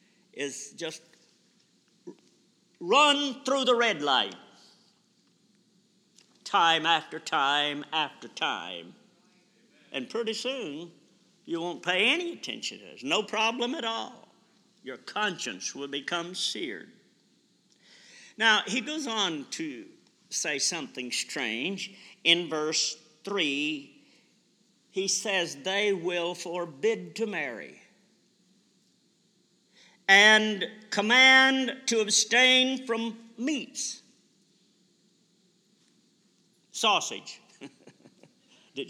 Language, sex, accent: English, male, American